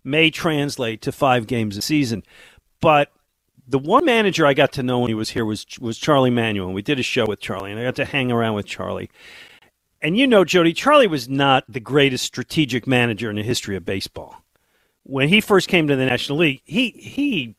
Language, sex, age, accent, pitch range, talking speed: English, male, 50-69, American, 125-160 Hz, 215 wpm